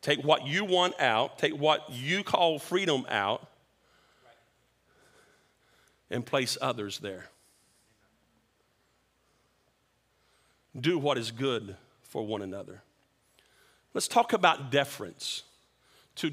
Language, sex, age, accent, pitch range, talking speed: English, male, 40-59, American, 145-200 Hz, 100 wpm